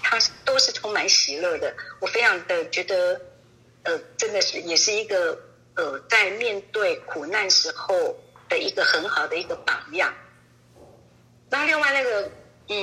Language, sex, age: Chinese, female, 50-69